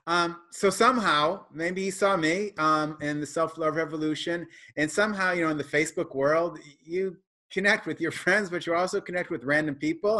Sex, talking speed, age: male, 190 wpm, 30-49